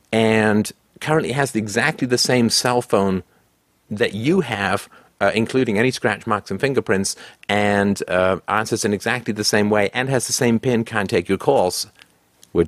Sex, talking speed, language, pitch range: male, 170 wpm, English, 95-125 Hz